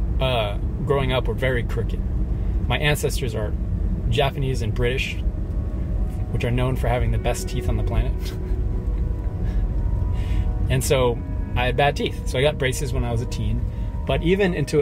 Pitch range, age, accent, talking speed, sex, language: 85-115 Hz, 20-39, American, 165 wpm, male, English